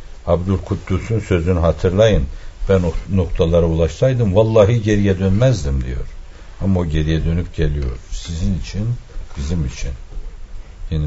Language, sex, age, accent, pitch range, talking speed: Turkish, male, 60-79, native, 80-105 Hz, 115 wpm